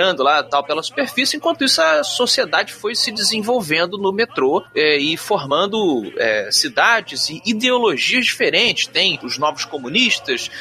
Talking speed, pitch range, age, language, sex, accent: 140 wpm, 155-240 Hz, 30-49, Portuguese, male, Brazilian